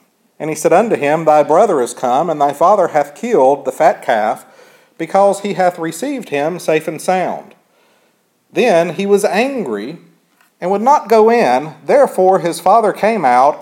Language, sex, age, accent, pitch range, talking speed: English, male, 50-69, American, 155-205 Hz, 170 wpm